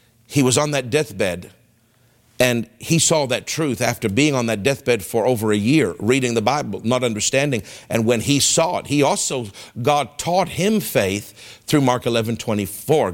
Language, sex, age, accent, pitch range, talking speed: English, male, 50-69, American, 120-165 Hz, 185 wpm